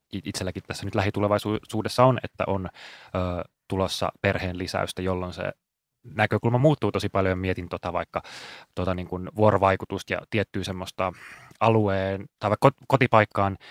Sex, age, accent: male, 20-39, native